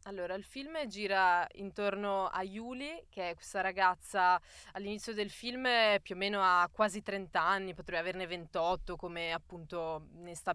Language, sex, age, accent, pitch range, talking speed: Italian, female, 20-39, native, 185-215 Hz, 160 wpm